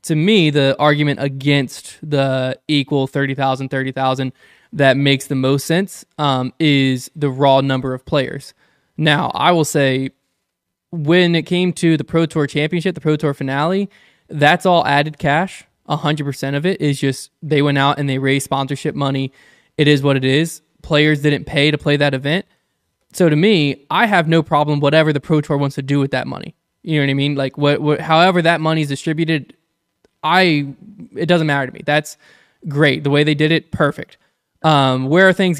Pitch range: 140-160 Hz